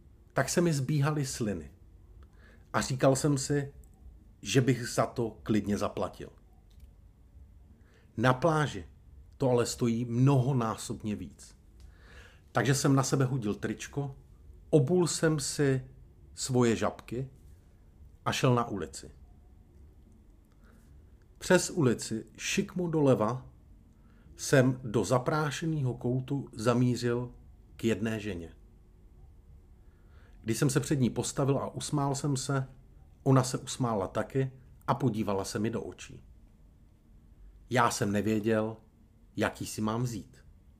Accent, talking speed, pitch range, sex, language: native, 110 wpm, 85-130 Hz, male, Czech